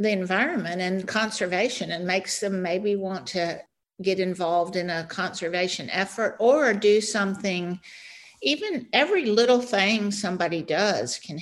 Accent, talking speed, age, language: American, 135 wpm, 50-69, English